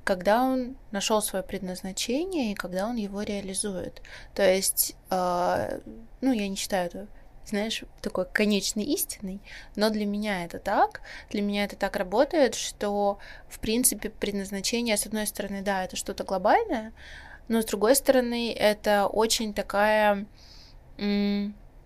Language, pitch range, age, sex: Russian, 195-225 Hz, 20-39, female